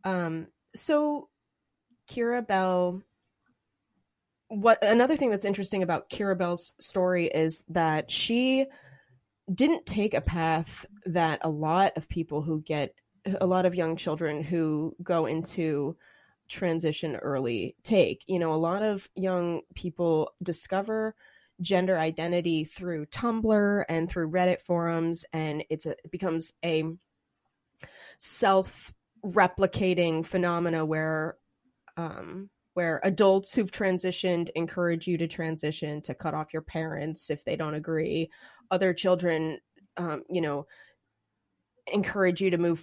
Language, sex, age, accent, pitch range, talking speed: English, female, 20-39, American, 160-190 Hz, 125 wpm